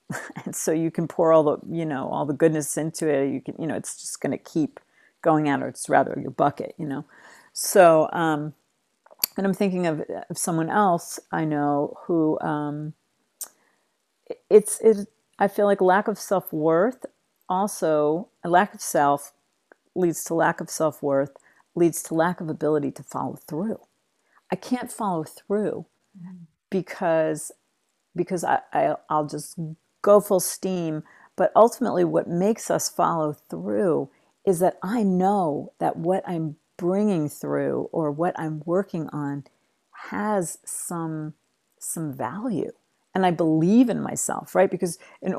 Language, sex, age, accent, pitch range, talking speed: English, female, 50-69, American, 155-195 Hz, 155 wpm